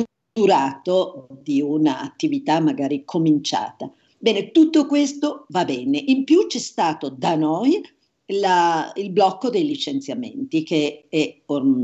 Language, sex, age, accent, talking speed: Italian, female, 50-69, native, 120 wpm